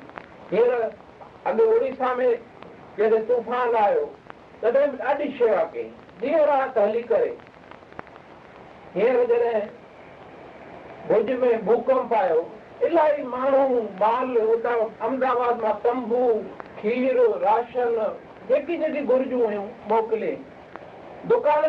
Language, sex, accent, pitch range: Hindi, male, native, 225-300 Hz